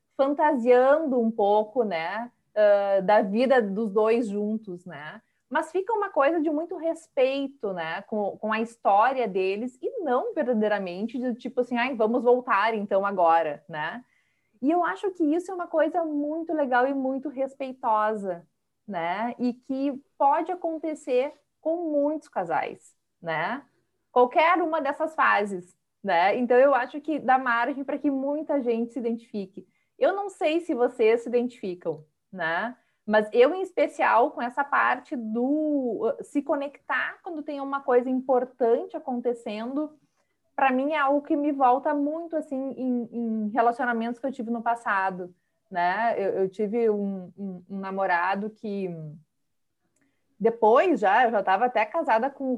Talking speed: 150 wpm